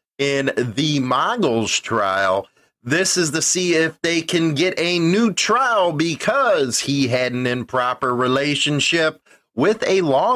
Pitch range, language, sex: 120-185 Hz, English, male